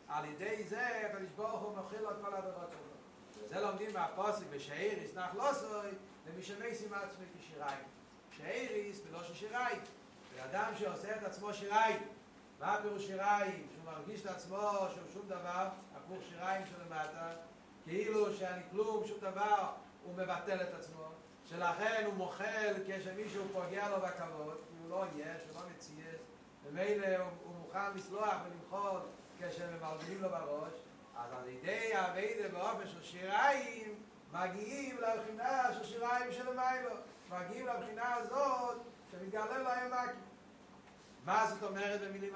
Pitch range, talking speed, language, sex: 185-230 Hz, 135 wpm, Hebrew, male